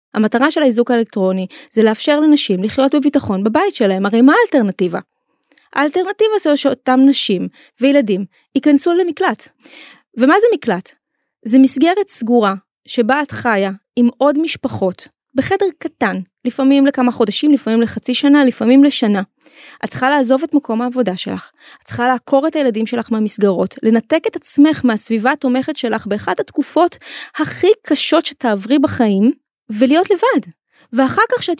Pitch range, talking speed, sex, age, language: 230-300 Hz, 135 wpm, female, 20-39, Hebrew